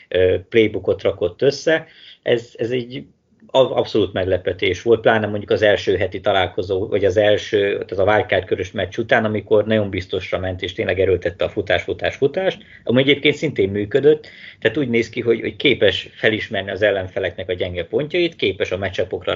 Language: Hungarian